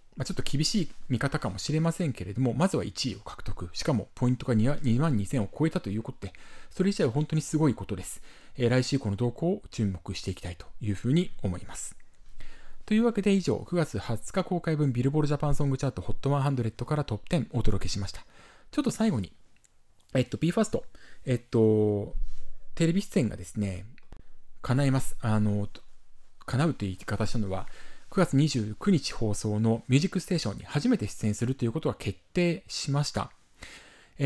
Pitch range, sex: 105-155 Hz, male